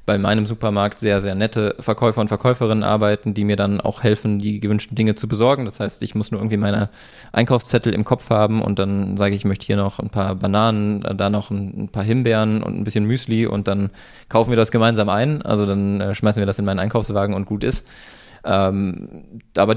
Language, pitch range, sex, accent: German, 105-115 Hz, male, German